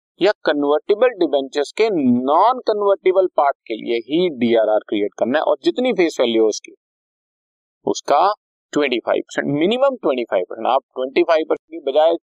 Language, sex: Hindi, male